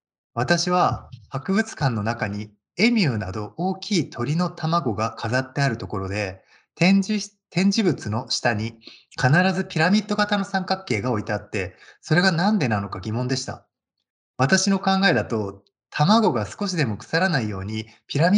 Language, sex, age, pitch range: Japanese, male, 20-39, 110-185 Hz